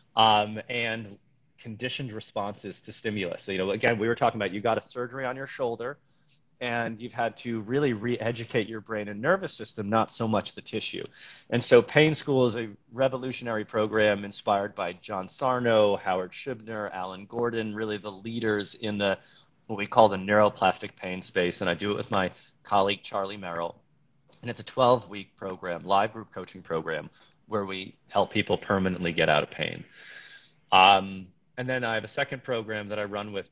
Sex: male